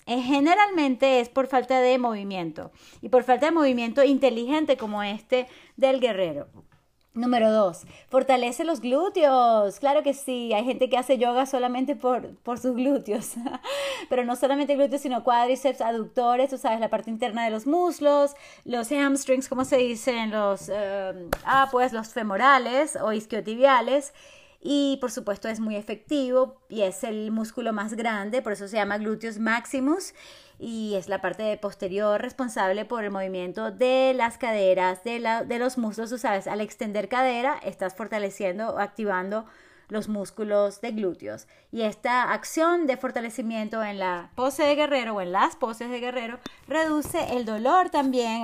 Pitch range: 215-265 Hz